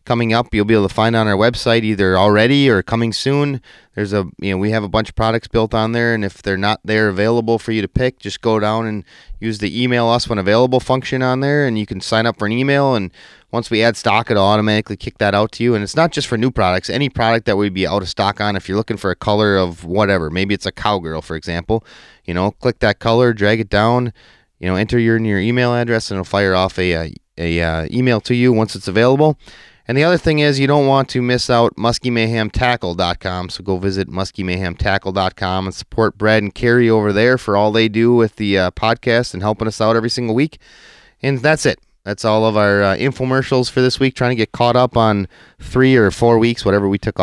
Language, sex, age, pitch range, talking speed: English, male, 30-49, 100-125 Hz, 245 wpm